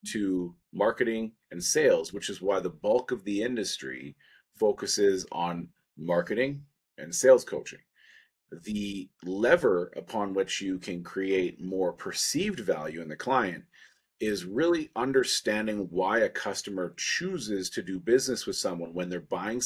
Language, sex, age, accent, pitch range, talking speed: English, male, 30-49, American, 95-145 Hz, 140 wpm